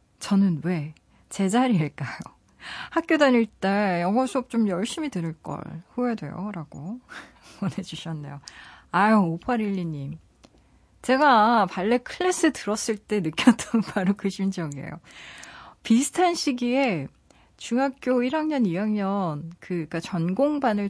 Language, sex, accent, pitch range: Korean, female, native, 170-250 Hz